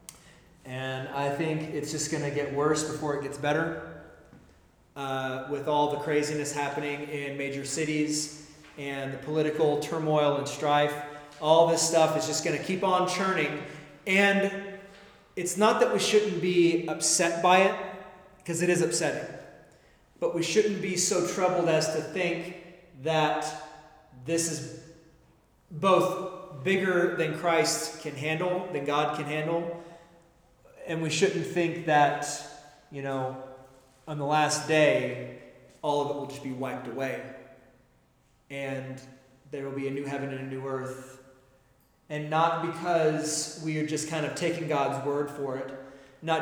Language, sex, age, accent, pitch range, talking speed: English, male, 30-49, American, 145-170 Hz, 155 wpm